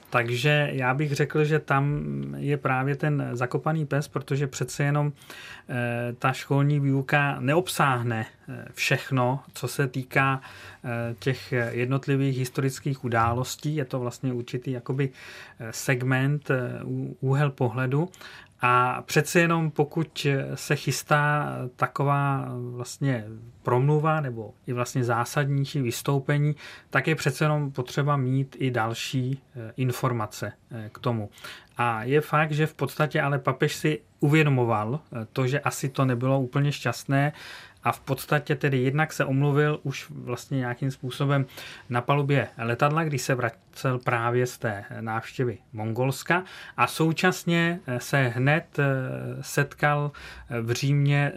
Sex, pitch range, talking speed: male, 125-145 Hz, 125 wpm